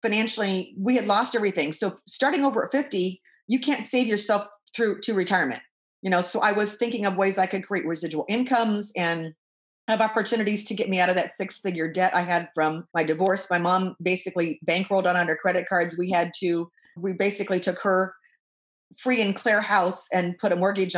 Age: 40-59